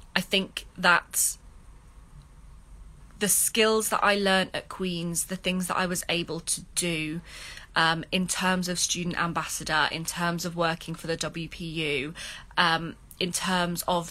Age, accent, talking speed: 20-39, British, 150 wpm